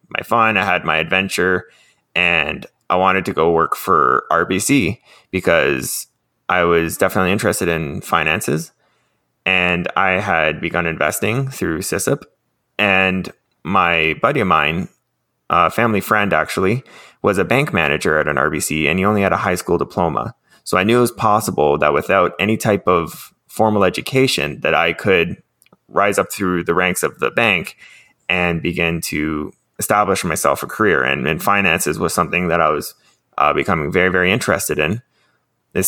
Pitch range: 85-110 Hz